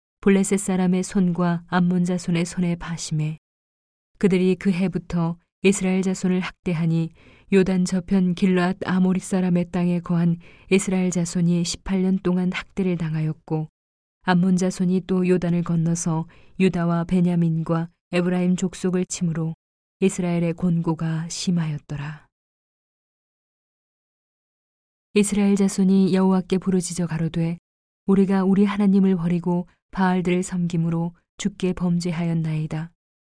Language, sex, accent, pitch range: Korean, female, native, 170-190 Hz